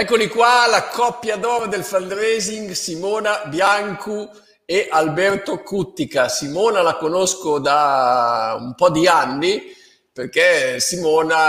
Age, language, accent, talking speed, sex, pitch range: 50-69, Italian, native, 115 wpm, male, 140-200 Hz